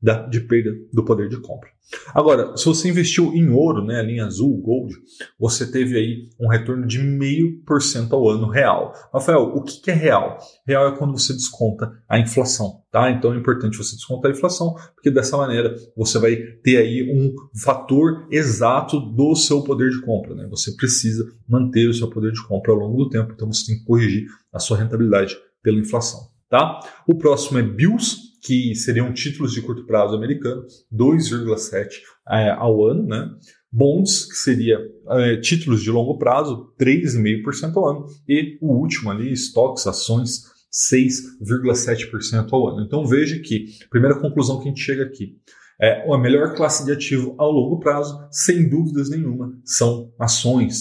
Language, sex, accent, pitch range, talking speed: Portuguese, male, Brazilian, 115-140 Hz, 170 wpm